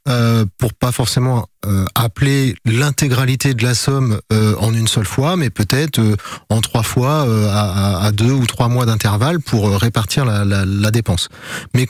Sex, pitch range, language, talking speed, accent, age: male, 110-140 Hz, French, 175 wpm, French, 30-49